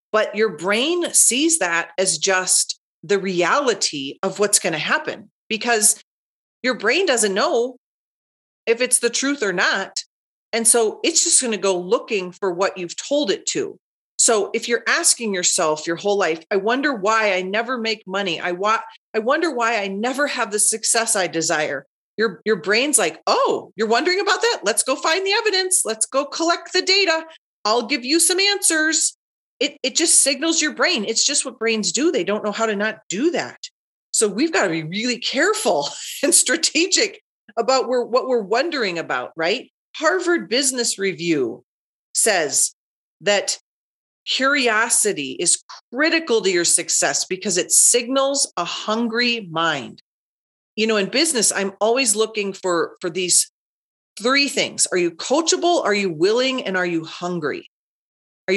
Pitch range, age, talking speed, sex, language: 200-300 Hz, 40-59, 170 wpm, female, English